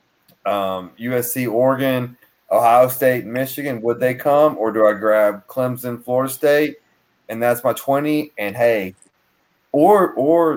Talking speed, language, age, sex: 135 wpm, English, 30-49, male